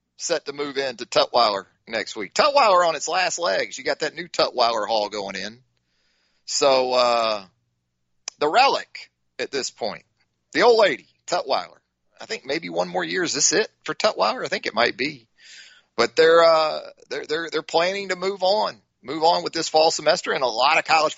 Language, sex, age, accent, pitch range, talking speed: English, male, 30-49, American, 135-195 Hz, 195 wpm